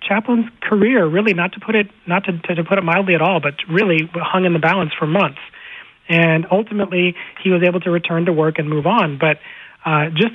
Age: 30-49